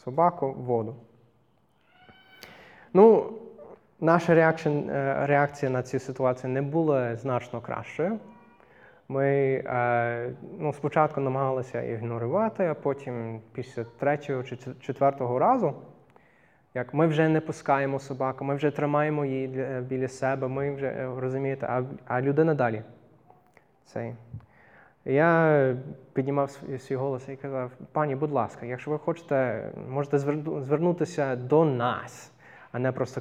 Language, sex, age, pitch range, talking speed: Ukrainian, male, 20-39, 125-150 Hz, 115 wpm